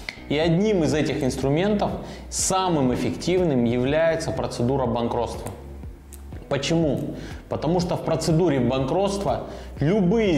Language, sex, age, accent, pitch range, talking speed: Russian, male, 20-39, native, 120-160 Hz, 100 wpm